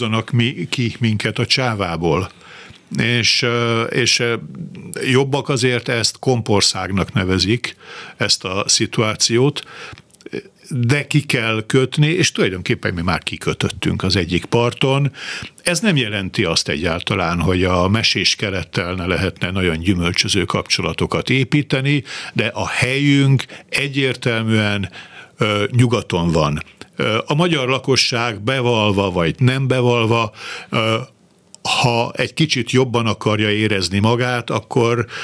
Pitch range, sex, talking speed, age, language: 105-130 Hz, male, 105 wpm, 60-79, Hungarian